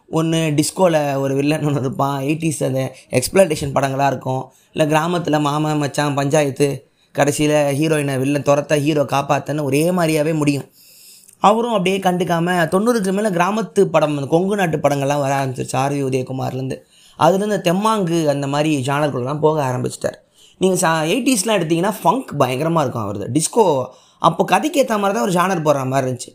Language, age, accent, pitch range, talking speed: Tamil, 20-39, native, 145-190 Hz, 135 wpm